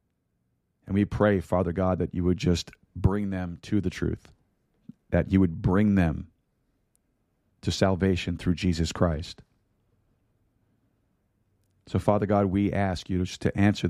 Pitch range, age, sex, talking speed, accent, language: 90-105 Hz, 40-59, male, 140 wpm, American, English